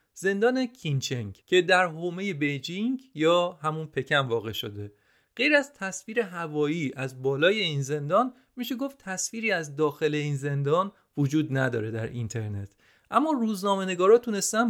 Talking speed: 135 wpm